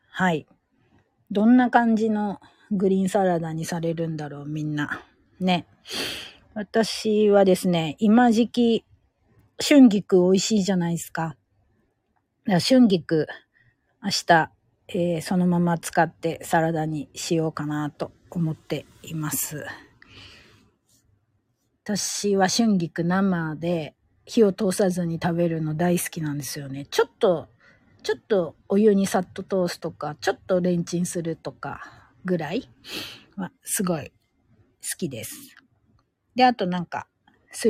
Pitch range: 155-200 Hz